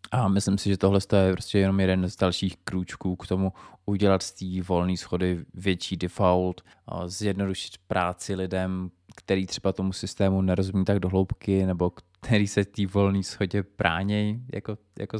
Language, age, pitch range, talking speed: Czech, 20-39, 95-110 Hz, 160 wpm